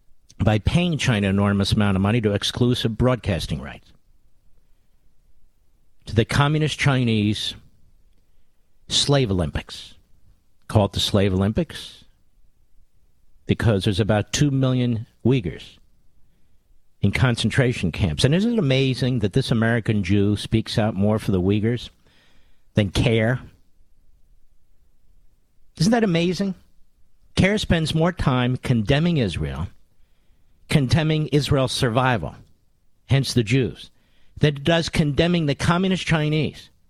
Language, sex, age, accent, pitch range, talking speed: English, male, 50-69, American, 95-135 Hz, 115 wpm